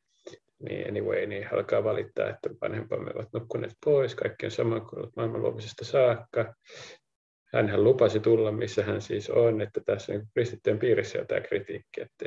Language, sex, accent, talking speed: Finnish, male, native, 150 wpm